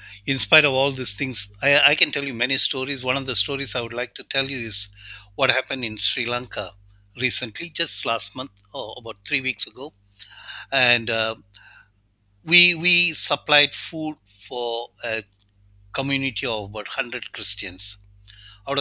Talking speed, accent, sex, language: 165 wpm, Indian, male, English